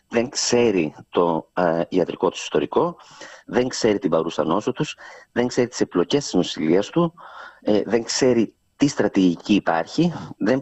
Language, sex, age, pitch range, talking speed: Greek, male, 40-59, 95-130 Hz, 155 wpm